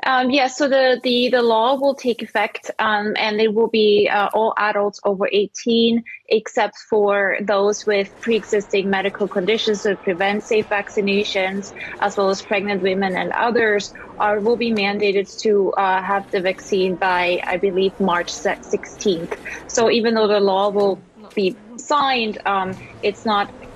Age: 20-39